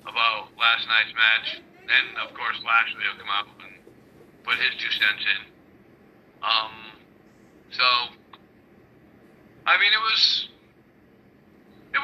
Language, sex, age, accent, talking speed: English, male, 50-69, American, 110 wpm